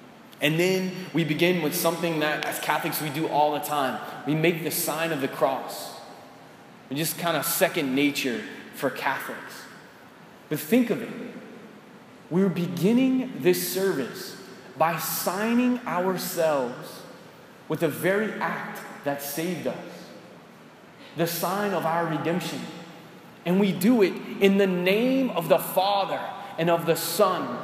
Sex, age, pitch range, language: male, 20-39, 155-195 Hz, English